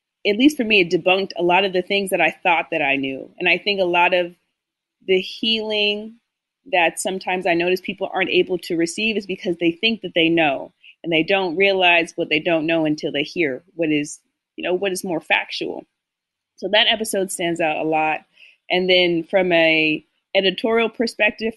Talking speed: 205 wpm